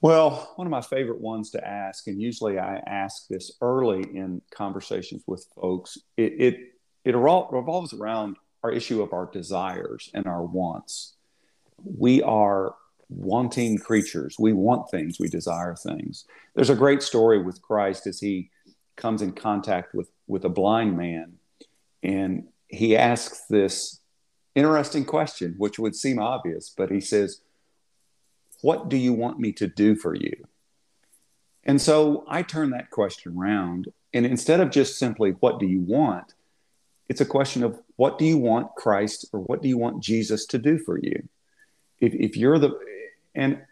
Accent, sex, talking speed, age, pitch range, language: American, male, 165 wpm, 50-69, 100-155 Hz, English